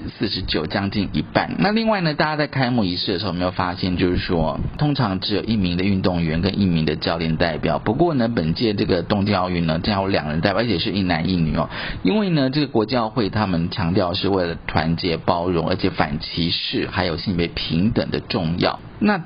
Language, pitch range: Chinese, 90-115 Hz